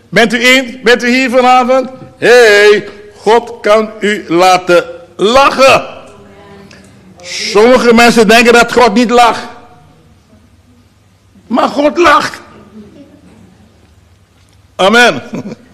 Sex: male